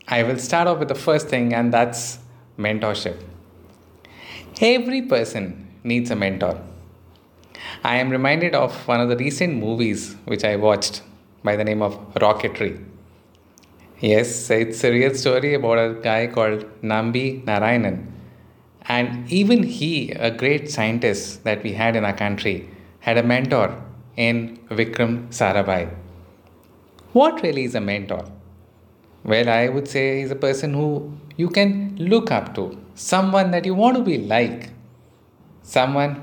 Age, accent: 30-49, Indian